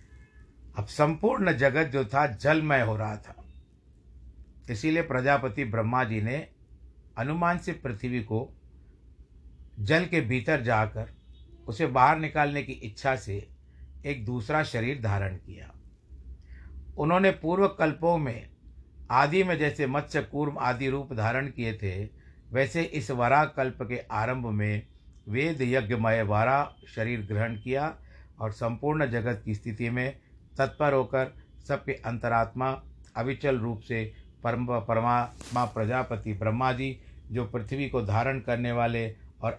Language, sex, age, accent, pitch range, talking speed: Hindi, male, 60-79, native, 105-135 Hz, 130 wpm